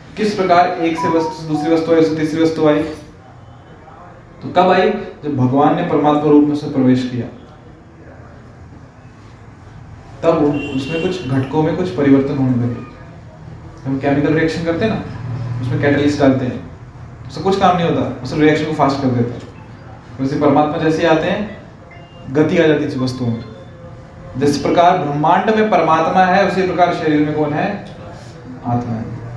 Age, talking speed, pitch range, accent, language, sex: 20-39, 120 wpm, 130-160 Hz, native, Hindi, male